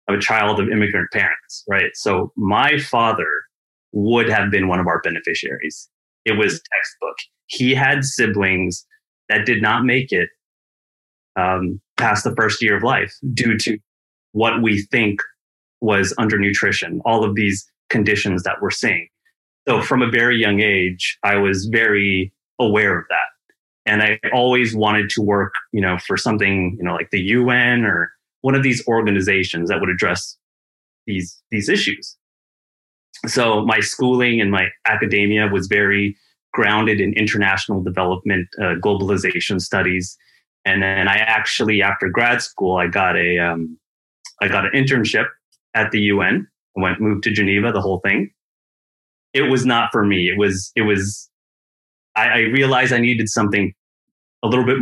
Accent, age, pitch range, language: American, 30-49, 95-115 Hz, English